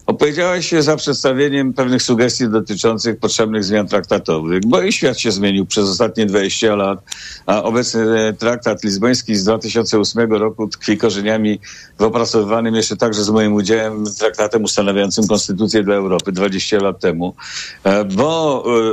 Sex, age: male, 50-69